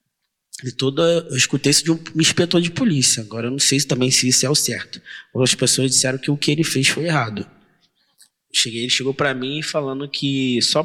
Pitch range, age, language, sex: 115-140 Hz, 20-39, Portuguese, male